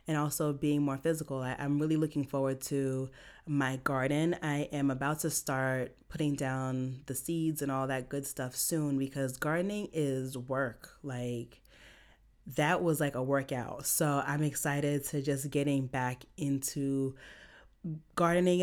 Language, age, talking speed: English, 30-49, 150 wpm